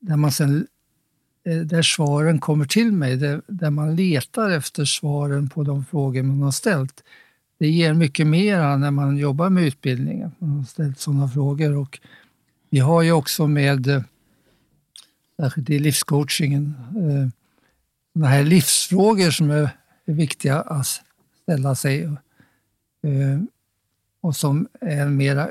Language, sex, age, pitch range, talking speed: Swedish, male, 60-79, 140-165 Hz, 125 wpm